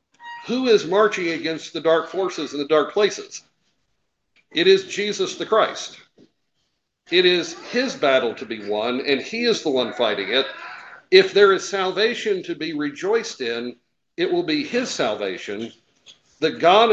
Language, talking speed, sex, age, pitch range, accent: English, 160 wpm, male, 50-69, 150-240 Hz, American